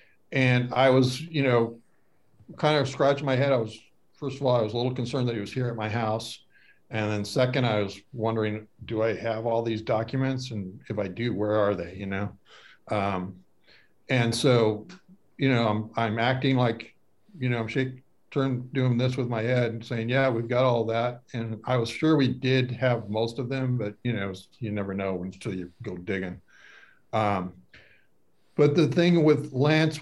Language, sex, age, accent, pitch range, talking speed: English, male, 50-69, American, 105-130 Hz, 200 wpm